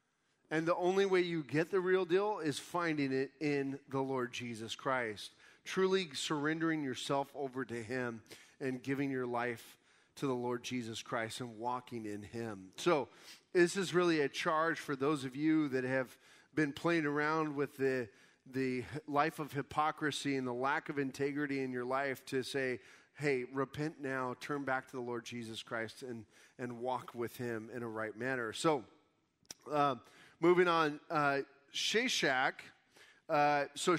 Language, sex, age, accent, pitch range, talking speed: English, male, 30-49, American, 130-160 Hz, 165 wpm